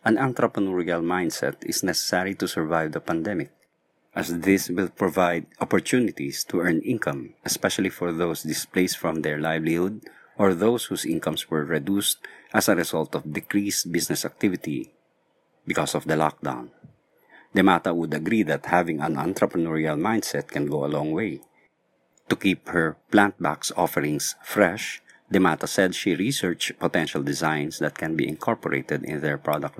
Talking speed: 145 wpm